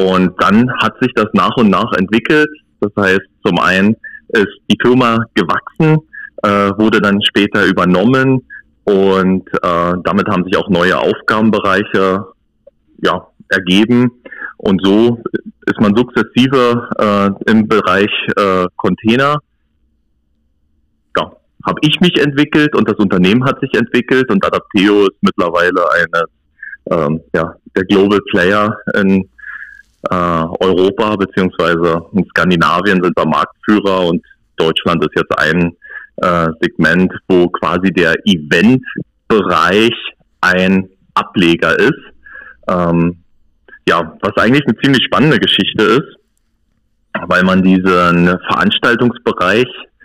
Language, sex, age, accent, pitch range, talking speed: German, male, 30-49, German, 90-115 Hz, 115 wpm